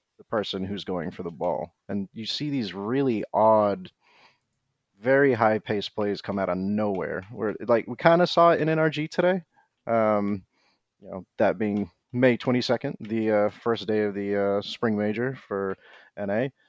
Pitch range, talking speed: 100-120 Hz, 170 wpm